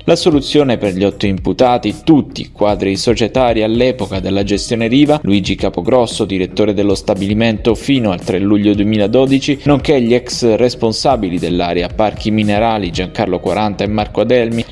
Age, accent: 20-39, native